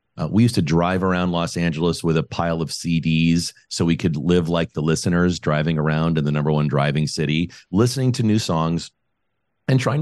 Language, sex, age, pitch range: English, male, 40-59, 75-100 Hz